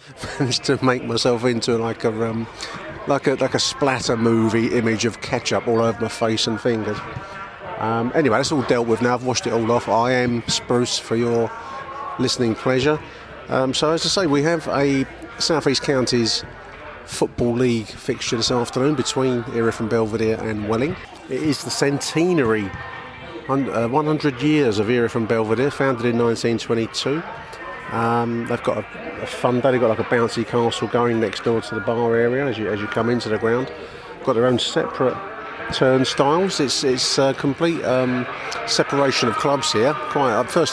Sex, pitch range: male, 115-135 Hz